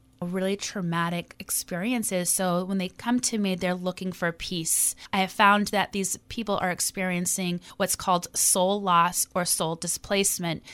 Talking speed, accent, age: 155 wpm, American, 30-49